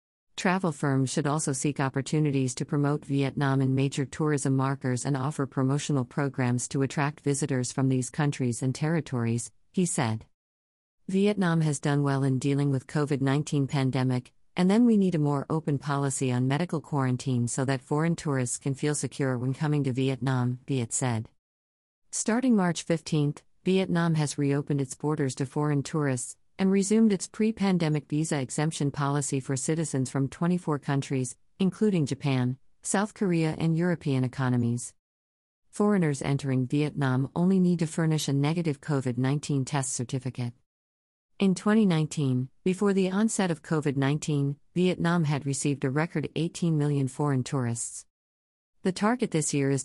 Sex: female